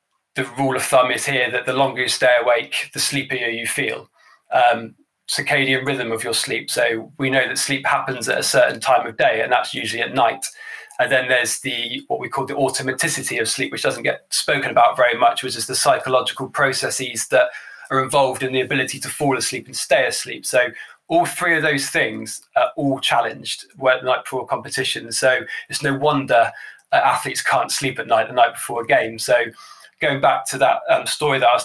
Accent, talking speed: British, 215 wpm